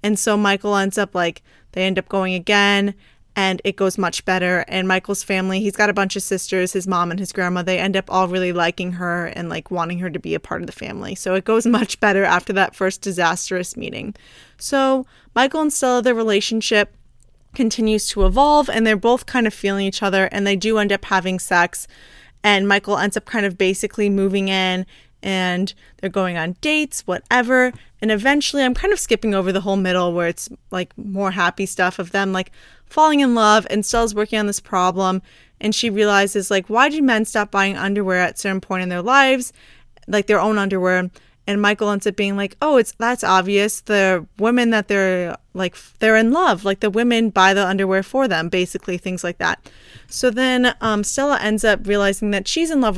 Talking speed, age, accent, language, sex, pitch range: 210 wpm, 20-39, American, English, female, 185-220 Hz